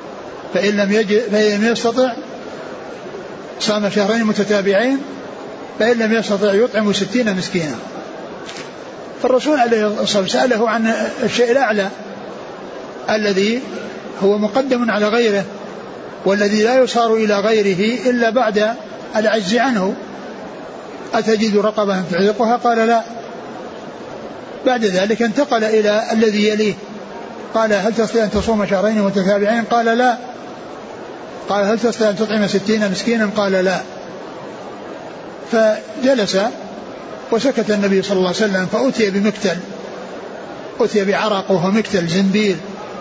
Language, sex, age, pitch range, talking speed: Arabic, male, 60-79, 200-230 Hz, 105 wpm